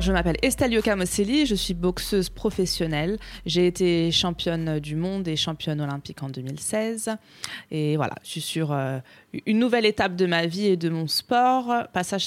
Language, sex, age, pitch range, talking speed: French, female, 20-39, 165-215 Hz, 165 wpm